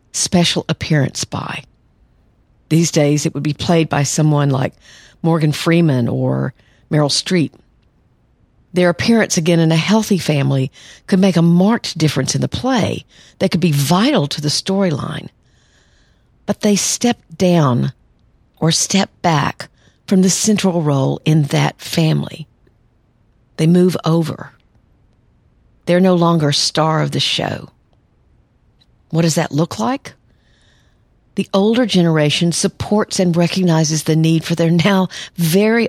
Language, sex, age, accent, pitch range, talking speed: English, female, 50-69, American, 145-180 Hz, 135 wpm